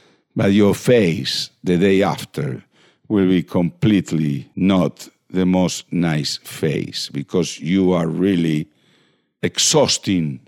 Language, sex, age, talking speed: English, male, 60-79, 110 wpm